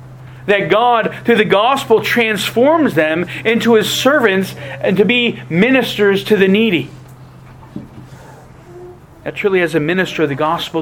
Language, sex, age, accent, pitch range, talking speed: English, male, 40-59, American, 140-210 Hz, 135 wpm